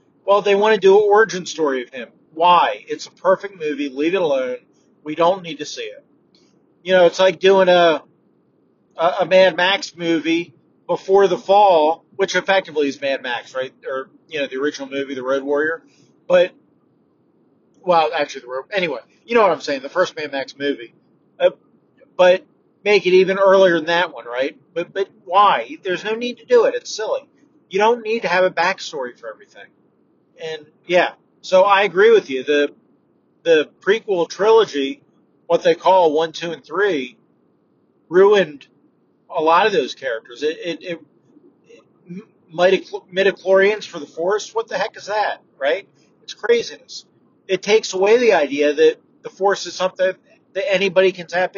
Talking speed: 180 wpm